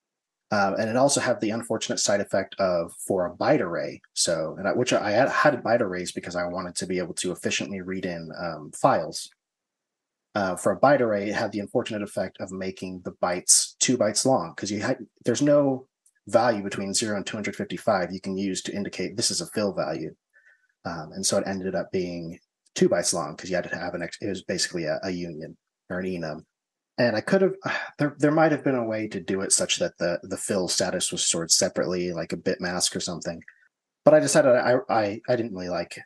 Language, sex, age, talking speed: English, male, 30-49, 225 wpm